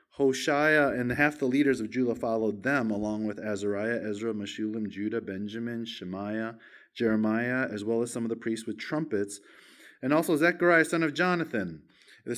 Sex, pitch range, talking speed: male, 110-140 Hz, 165 wpm